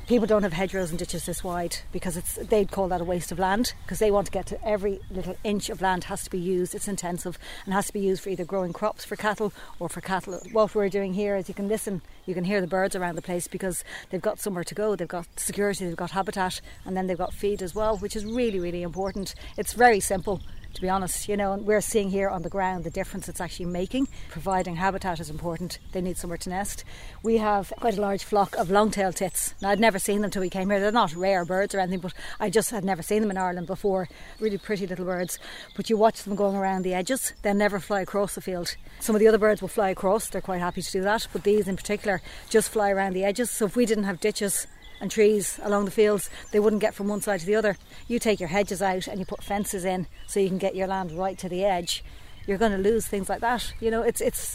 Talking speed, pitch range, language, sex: 265 wpm, 185-210 Hz, English, female